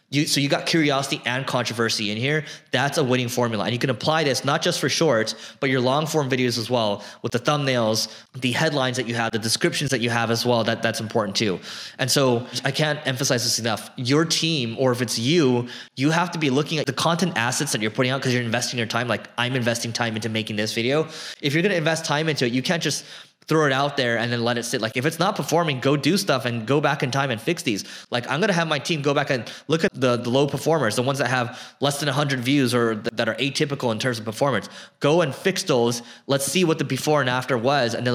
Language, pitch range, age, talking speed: English, 120-150 Hz, 20-39, 265 wpm